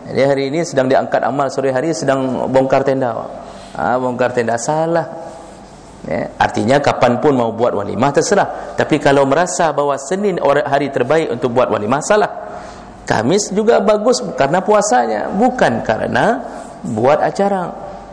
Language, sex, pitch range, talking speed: English, male, 130-180 Hz, 140 wpm